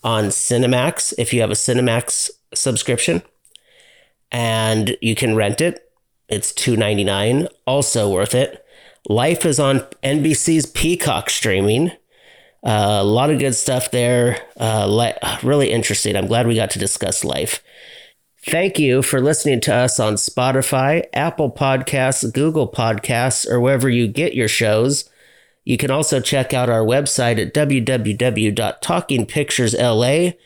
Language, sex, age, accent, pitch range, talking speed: English, male, 40-59, American, 115-150 Hz, 135 wpm